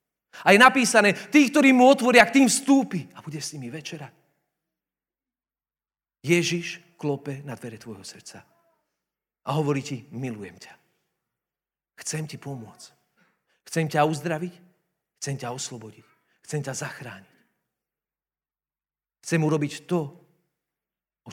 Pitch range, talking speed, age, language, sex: 155-245 Hz, 120 wpm, 40-59, Slovak, male